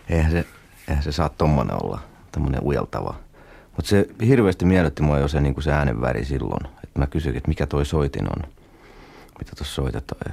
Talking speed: 175 wpm